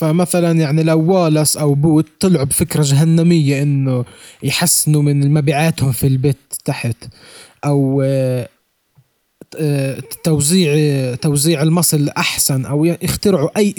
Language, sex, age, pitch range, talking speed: Arabic, male, 20-39, 135-165 Hz, 100 wpm